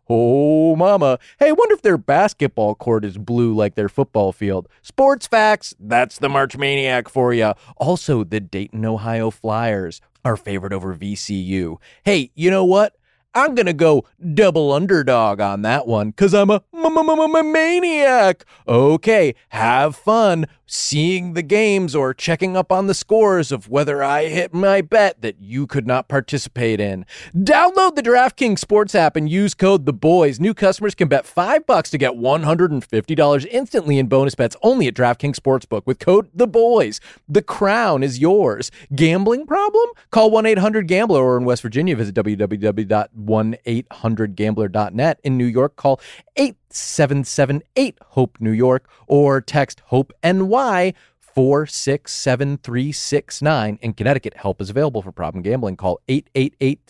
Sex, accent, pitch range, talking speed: male, American, 115-185 Hz, 150 wpm